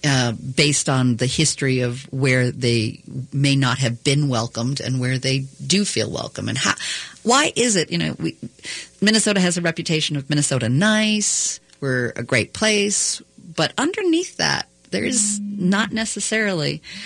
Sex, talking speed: female, 155 wpm